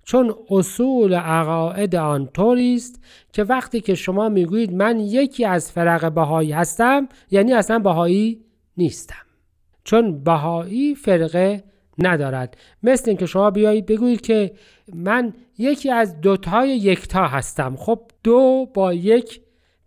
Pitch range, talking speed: 170-220 Hz, 120 wpm